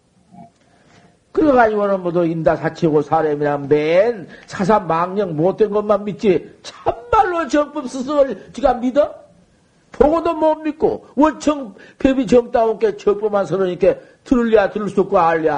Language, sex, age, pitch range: Korean, male, 50-69, 170-245 Hz